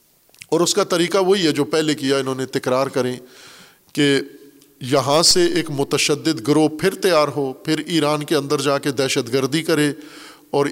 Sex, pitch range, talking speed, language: male, 140-180 Hz, 180 wpm, Urdu